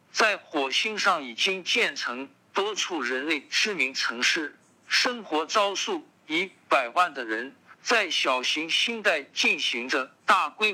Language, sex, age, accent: Chinese, male, 50-69, native